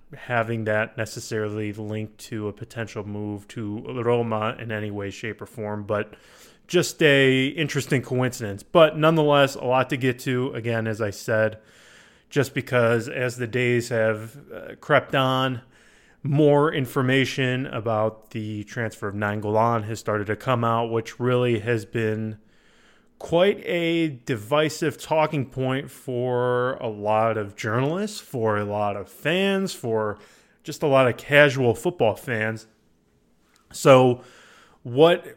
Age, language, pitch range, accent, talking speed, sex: 20-39, English, 110-140 Hz, American, 140 wpm, male